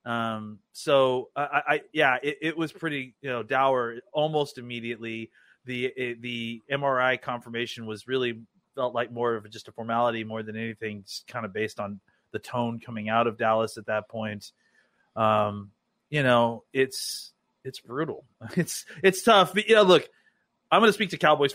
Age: 30-49